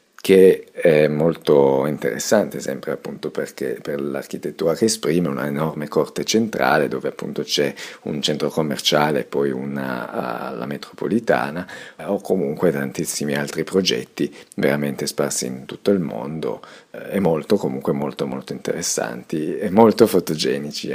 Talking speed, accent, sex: 130 wpm, native, male